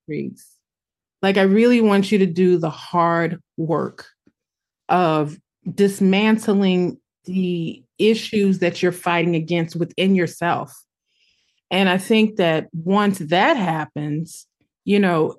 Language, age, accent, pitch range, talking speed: English, 30-49, American, 175-215 Hz, 115 wpm